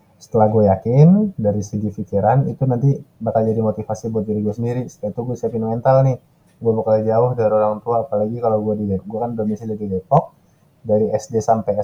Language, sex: Indonesian, male